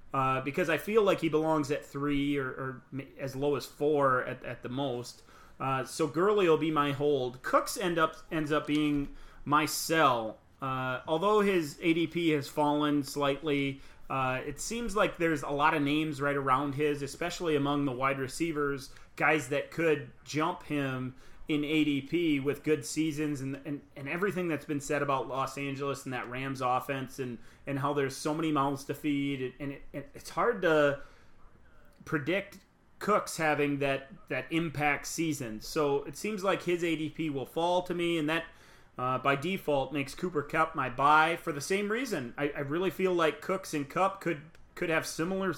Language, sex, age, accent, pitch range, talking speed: English, male, 30-49, American, 135-160 Hz, 180 wpm